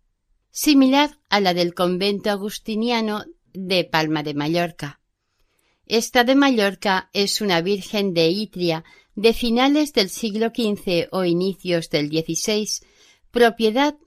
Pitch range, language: 170-225 Hz, Spanish